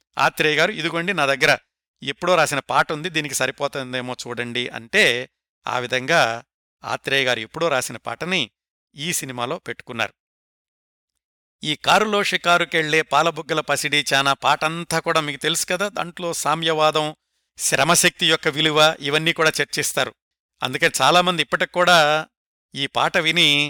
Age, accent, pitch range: 60-79, native, 135-170 Hz